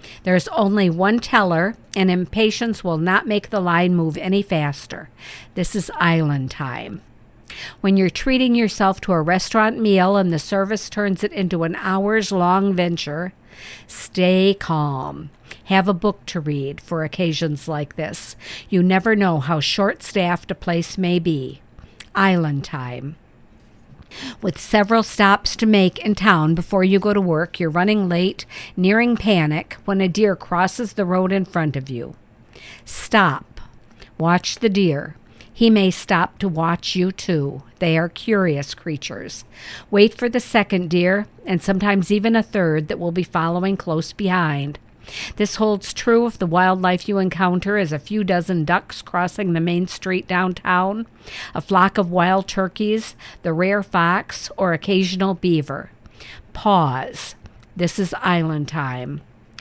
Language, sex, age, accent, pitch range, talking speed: English, female, 50-69, American, 165-200 Hz, 150 wpm